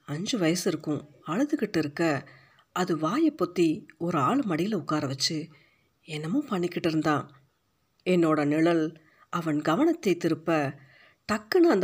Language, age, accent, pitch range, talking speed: Tamil, 50-69, native, 155-190 Hz, 110 wpm